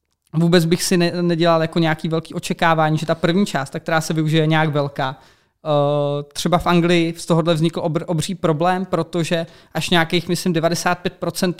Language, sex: Czech, male